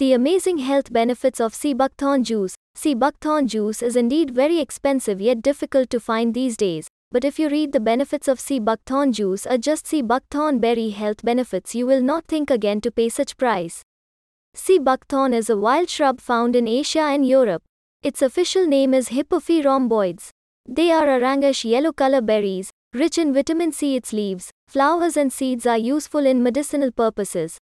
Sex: female